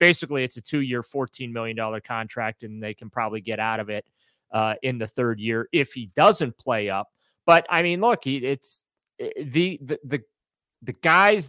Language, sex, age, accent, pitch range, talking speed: English, male, 30-49, American, 110-145 Hz, 180 wpm